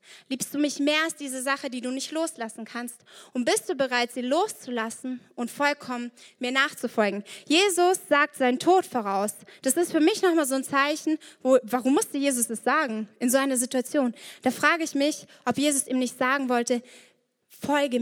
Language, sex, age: German, female, 20-39